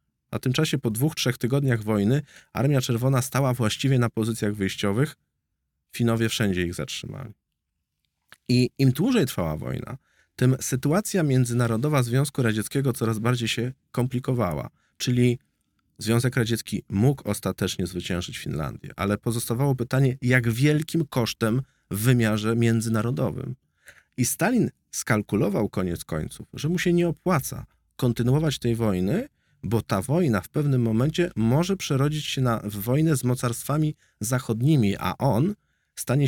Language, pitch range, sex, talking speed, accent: Polish, 110-140 Hz, male, 130 wpm, native